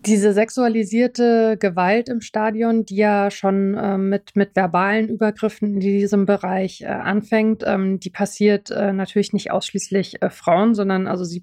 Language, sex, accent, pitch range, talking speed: German, female, German, 190-210 Hz, 160 wpm